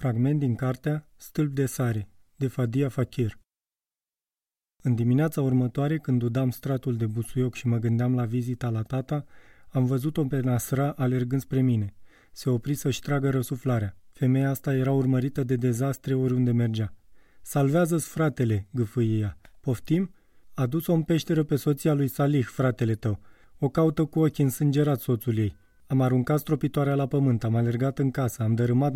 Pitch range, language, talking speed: 120-140 Hz, Romanian, 160 wpm